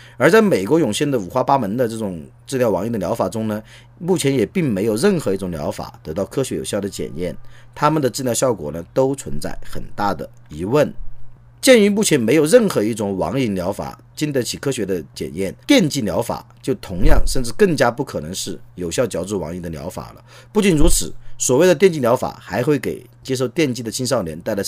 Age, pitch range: 40-59, 120-165 Hz